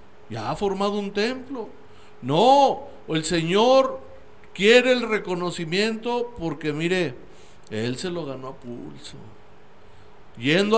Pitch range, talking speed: 155-200 Hz, 110 wpm